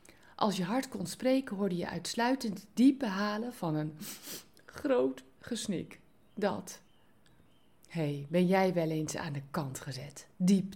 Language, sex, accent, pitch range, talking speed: Dutch, female, Dutch, 175-240 Hz, 140 wpm